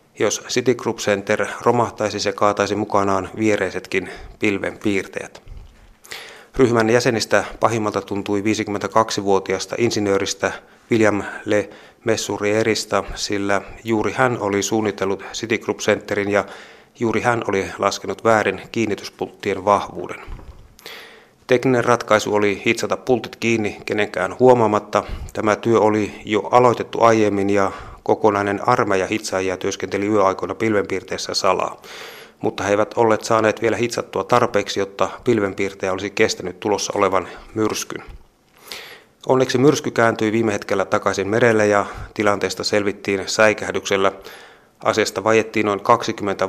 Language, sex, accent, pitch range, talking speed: Finnish, male, native, 100-115 Hz, 115 wpm